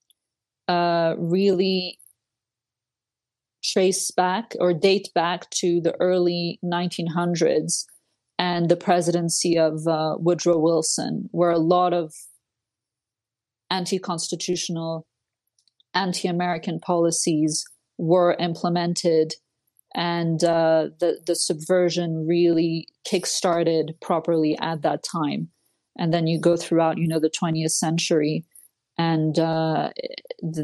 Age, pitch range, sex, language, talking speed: 30-49, 160-175 Hz, female, English, 100 wpm